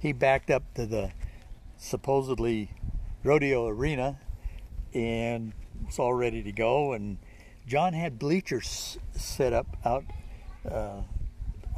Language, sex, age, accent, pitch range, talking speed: English, male, 60-79, American, 110-165 Hz, 110 wpm